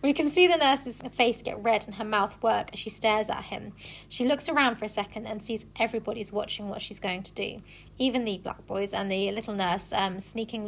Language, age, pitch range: English, 20-39, 205-245 Hz